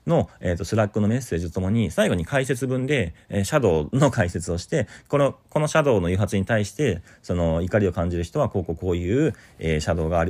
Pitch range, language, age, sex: 80-130 Hz, Japanese, 40-59, male